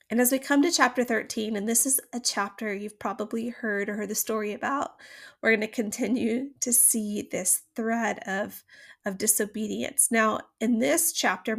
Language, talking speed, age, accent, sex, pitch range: English, 180 wpm, 30-49, American, female, 220-260 Hz